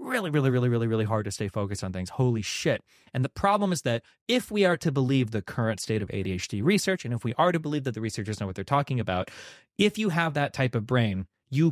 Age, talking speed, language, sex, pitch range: 30-49, 260 wpm, English, male, 110-140 Hz